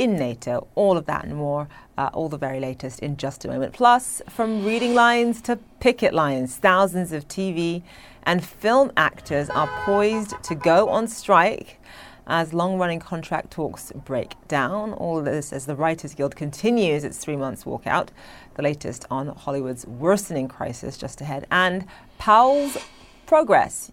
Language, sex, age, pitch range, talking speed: English, female, 30-49, 150-190 Hz, 160 wpm